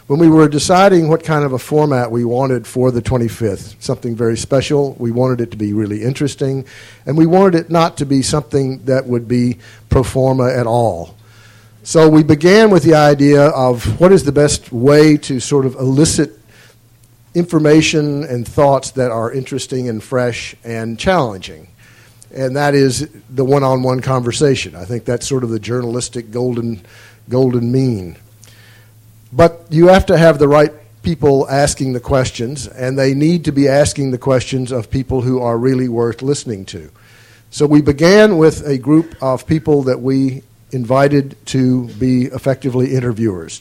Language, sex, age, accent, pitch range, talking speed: English, male, 50-69, American, 115-145 Hz, 170 wpm